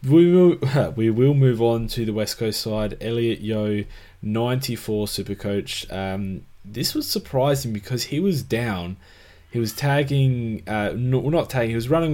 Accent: Australian